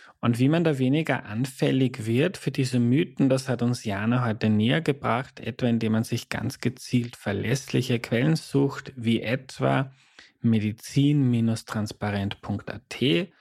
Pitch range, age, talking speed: 110-135 Hz, 30-49, 130 wpm